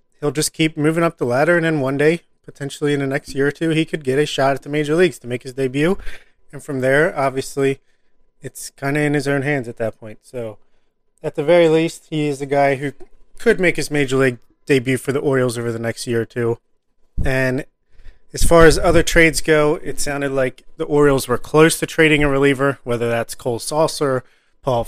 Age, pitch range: 30-49, 125-150 Hz